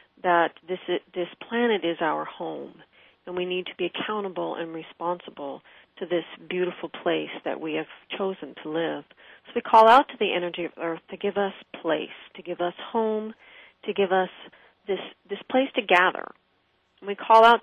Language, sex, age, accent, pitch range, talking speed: English, female, 40-59, American, 175-215 Hz, 180 wpm